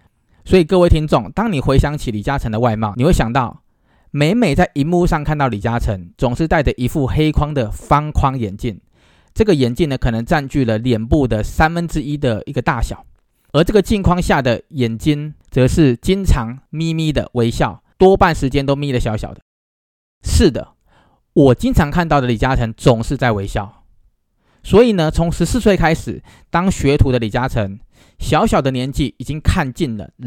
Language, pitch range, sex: Chinese, 115-160 Hz, male